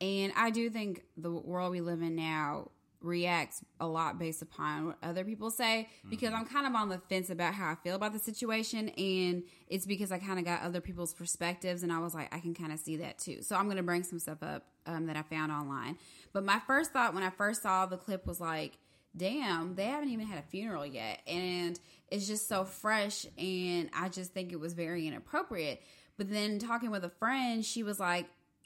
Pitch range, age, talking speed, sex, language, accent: 170-205 Hz, 20-39, 230 wpm, female, English, American